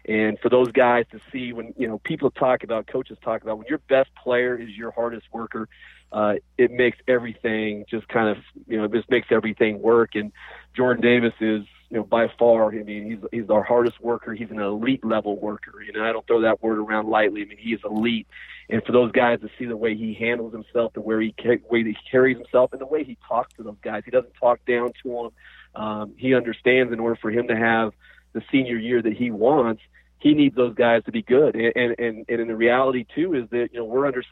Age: 30-49